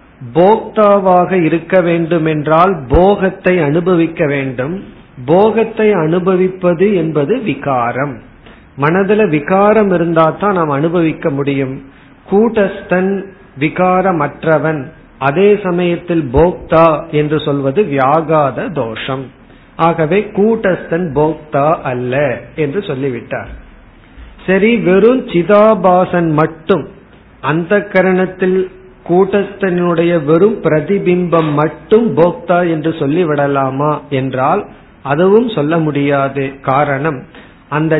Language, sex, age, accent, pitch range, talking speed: Tamil, male, 50-69, native, 145-185 Hz, 80 wpm